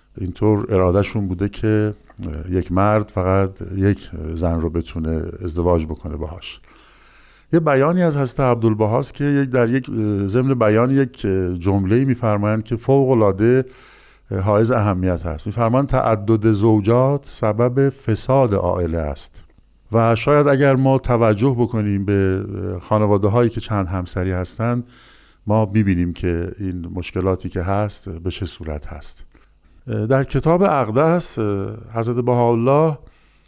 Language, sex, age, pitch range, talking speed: Persian, male, 50-69, 95-120 Hz, 125 wpm